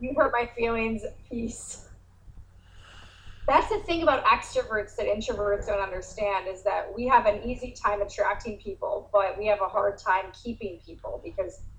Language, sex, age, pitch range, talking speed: English, female, 20-39, 190-235 Hz, 165 wpm